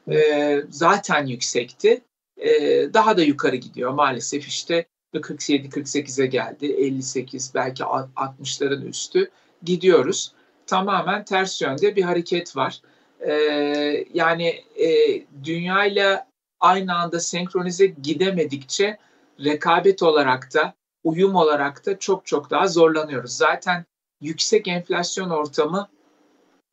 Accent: native